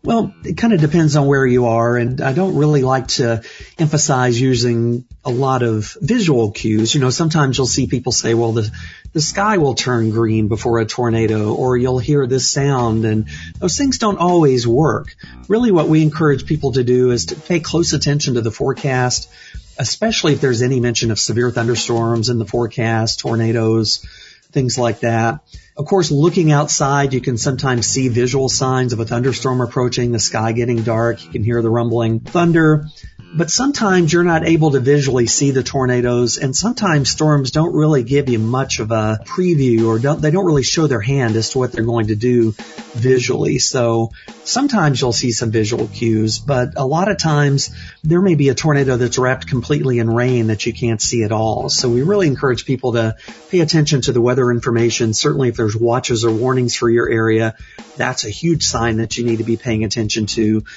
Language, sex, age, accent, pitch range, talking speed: English, male, 40-59, American, 115-145 Hz, 200 wpm